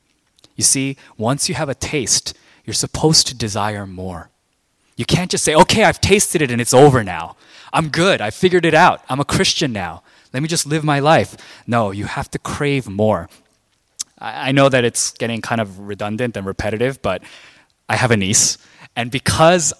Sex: male